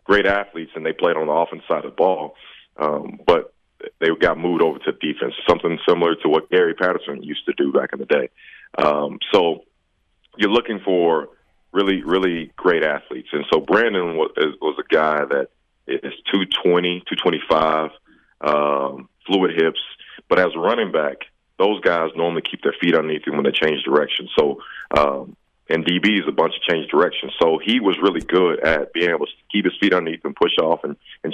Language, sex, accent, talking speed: English, male, American, 195 wpm